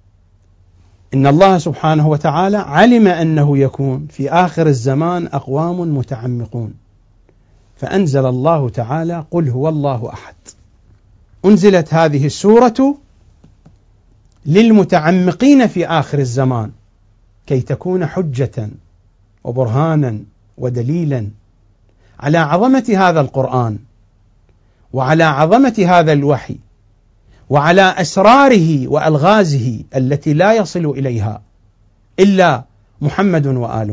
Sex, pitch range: male, 105-165 Hz